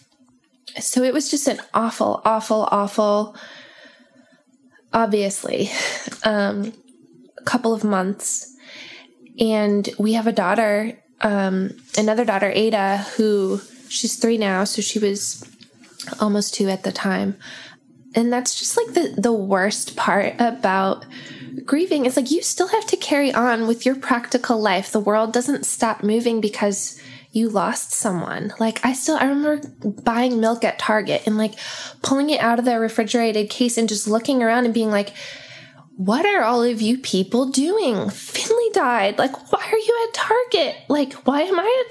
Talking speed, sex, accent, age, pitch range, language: 160 wpm, female, American, 10-29, 210-260 Hz, English